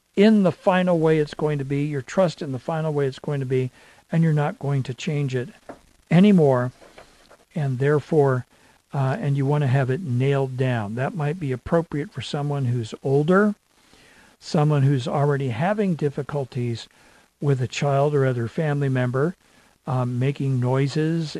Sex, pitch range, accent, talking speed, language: male, 130-170 Hz, American, 170 wpm, English